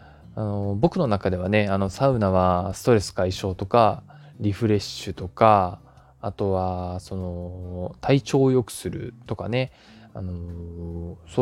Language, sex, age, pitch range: Japanese, male, 20-39, 95-130 Hz